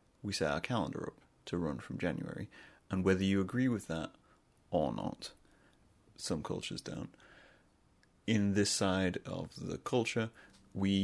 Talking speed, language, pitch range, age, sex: 145 wpm, English, 90-115 Hz, 30-49, male